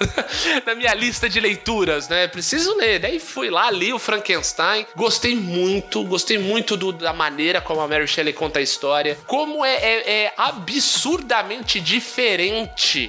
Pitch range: 165-245 Hz